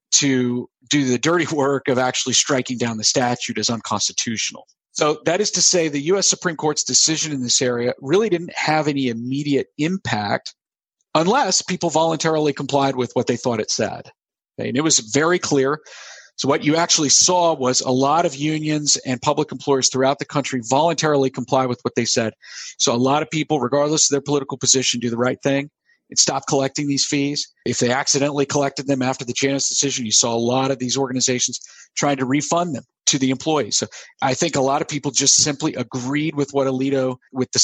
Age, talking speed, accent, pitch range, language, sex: 50-69, 200 wpm, American, 125-150 Hz, English, male